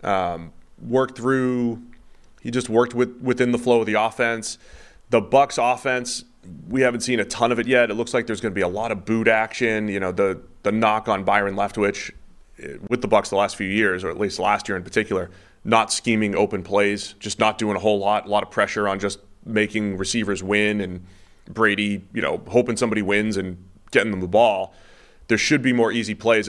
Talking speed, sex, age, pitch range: 215 wpm, male, 30-49, 95-115 Hz